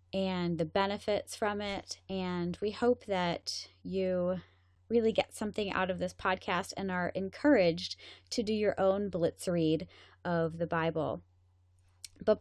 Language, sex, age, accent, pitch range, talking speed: English, female, 20-39, American, 180-220 Hz, 145 wpm